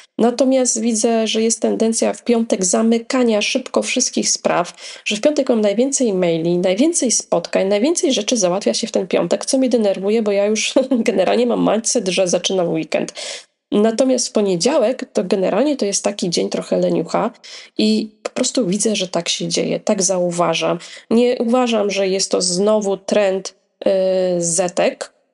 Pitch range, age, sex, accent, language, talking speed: 195-240 Hz, 20-39, female, native, Polish, 160 wpm